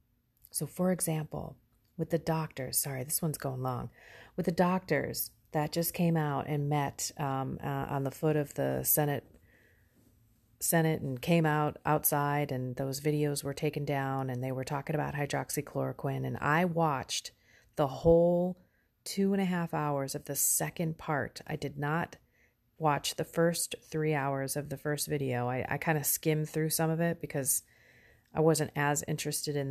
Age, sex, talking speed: 30-49, female, 175 wpm